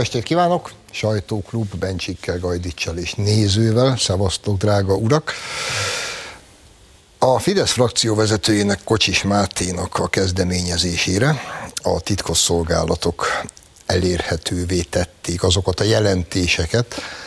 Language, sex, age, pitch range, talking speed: Hungarian, male, 60-79, 85-110 Hz, 90 wpm